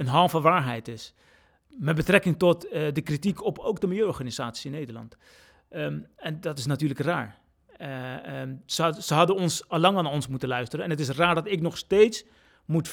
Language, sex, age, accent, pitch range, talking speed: Dutch, male, 30-49, Dutch, 145-190 Hz, 195 wpm